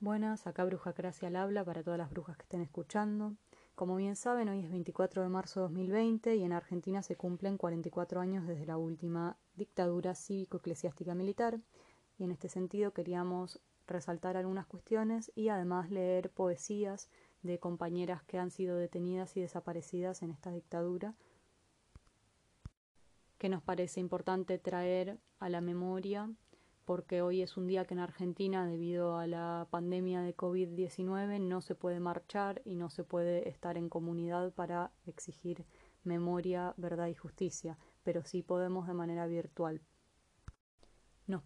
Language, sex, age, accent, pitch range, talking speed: Spanish, female, 20-39, Argentinian, 175-190 Hz, 150 wpm